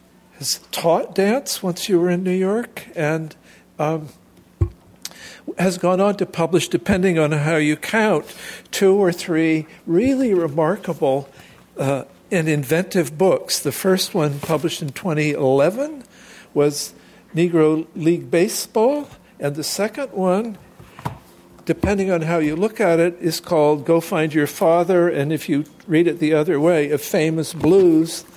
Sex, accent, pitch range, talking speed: male, American, 155-185 Hz, 140 wpm